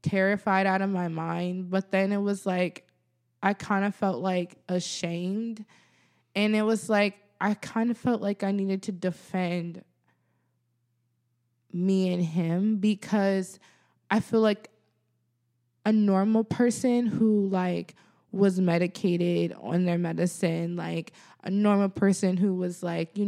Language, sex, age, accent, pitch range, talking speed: English, female, 20-39, American, 170-205 Hz, 140 wpm